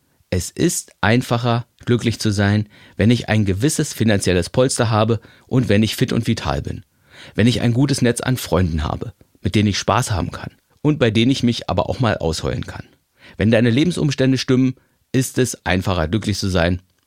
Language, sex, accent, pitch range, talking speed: German, male, German, 100-130 Hz, 190 wpm